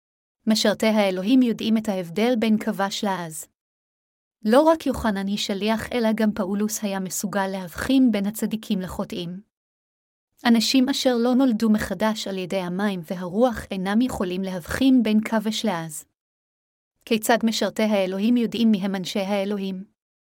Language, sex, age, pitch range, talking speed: Hebrew, female, 30-49, 195-230 Hz, 135 wpm